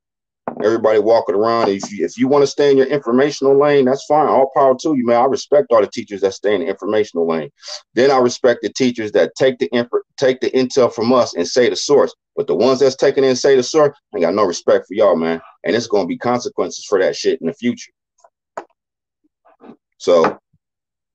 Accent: American